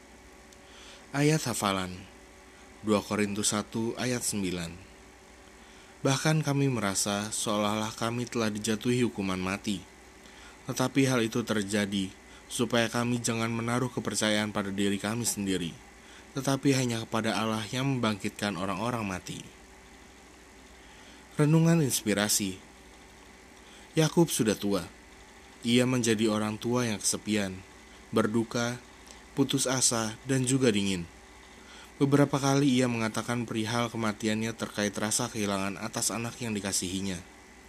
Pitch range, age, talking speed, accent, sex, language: 100-125 Hz, 20-39, 105 wpm, native, male, Indonesian